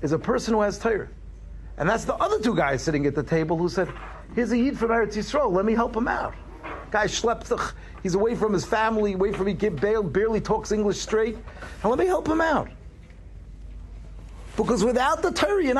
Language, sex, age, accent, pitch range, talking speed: English, male, 50-69, American, 145-220 Hz, 215 wpm